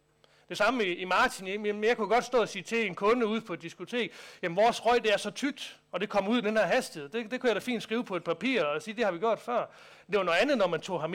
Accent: native